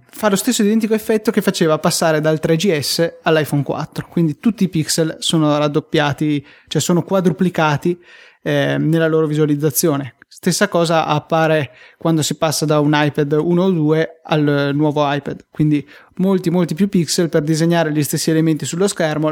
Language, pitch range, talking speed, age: Italian, 150-170 Hz, 160 wpm, 20-39